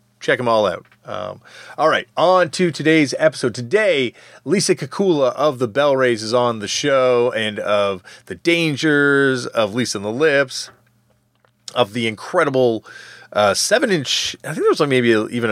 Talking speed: 165 wpm